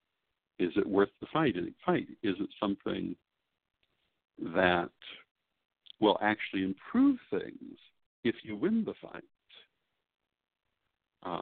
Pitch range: 95-150 Hz